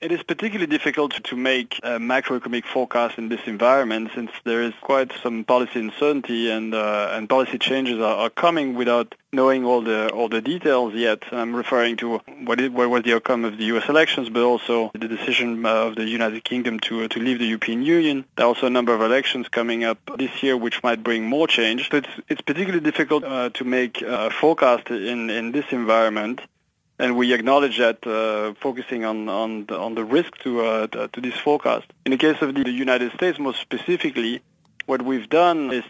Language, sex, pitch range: English, male, 115-130 Hz